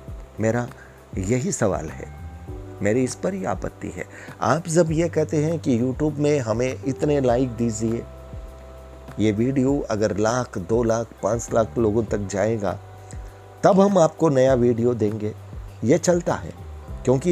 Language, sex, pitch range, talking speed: Hindi, male, 95-150 Hz, 145 wpm